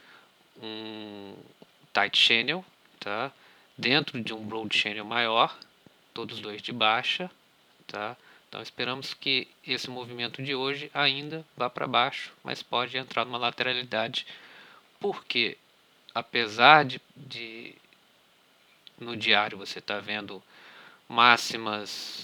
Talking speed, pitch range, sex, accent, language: 110 wpm, 105-135 Hz, male, Brazilian, Portuguese